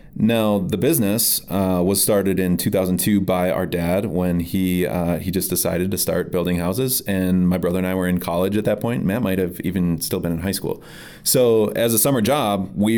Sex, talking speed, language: male, 215 wpm, English